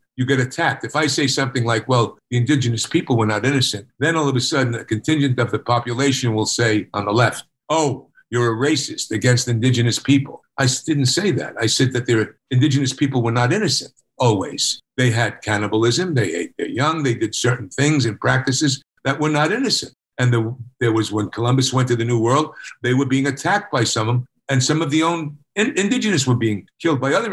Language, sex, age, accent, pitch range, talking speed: English, male, 50-69, American, 115-145 Hz, 215 wpm